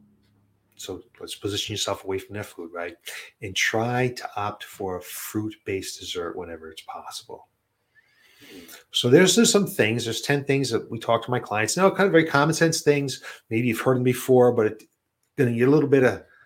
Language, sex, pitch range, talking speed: English, male, 105-130 Hz, 200 wpm